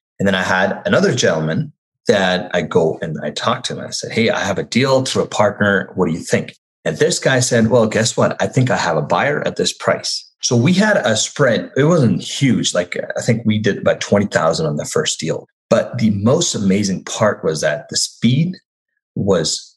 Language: English